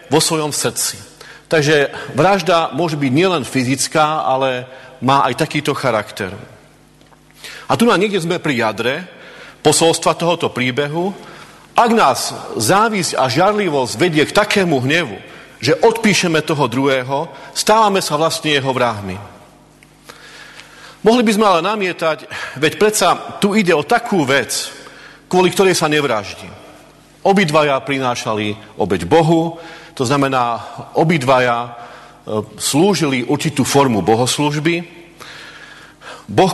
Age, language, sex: 40-59, Slovak, male